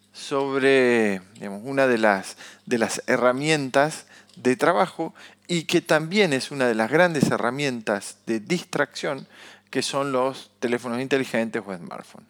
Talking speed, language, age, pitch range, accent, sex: 135 wpm, Spanish, 40-59, 125-165 Hz, Argentinian, male